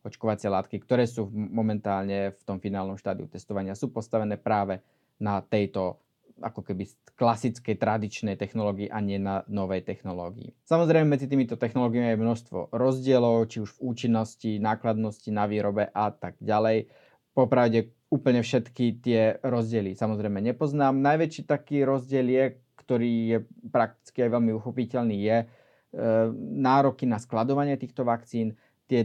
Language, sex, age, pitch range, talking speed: Slovak, male, 20-39, 105-125 Hz, 140 wpm